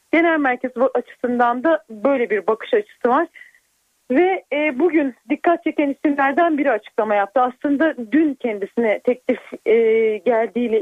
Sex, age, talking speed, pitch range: female, 40-59, 135 wpm, 225-295 Hz